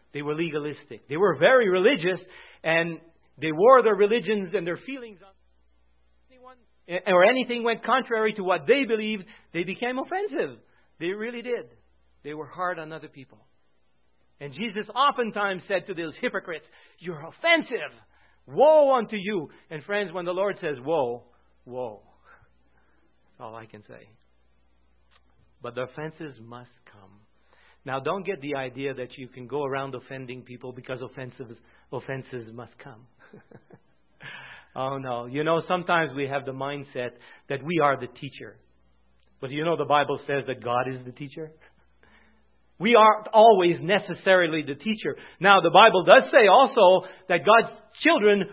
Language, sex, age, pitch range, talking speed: English, male, 50-69, 130-205 Hz, 155 wpm